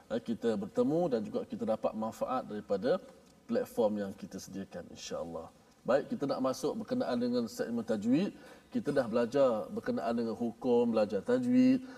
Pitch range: 155-250 Hz